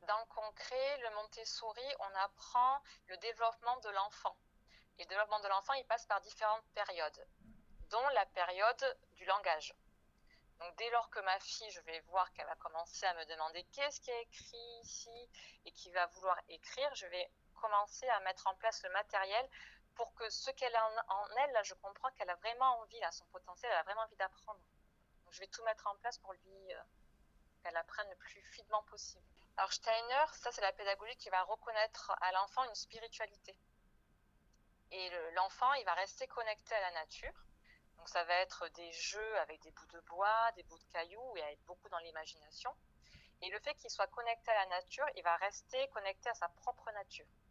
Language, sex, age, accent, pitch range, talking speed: French, female, 30-49, French, 180-230 Hz, 200 wpm